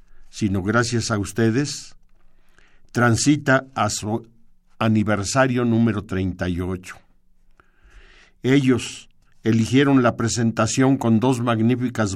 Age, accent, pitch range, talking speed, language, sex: 50-69, Mexican, 105-125 Hz, 85 wpm, Spanish, male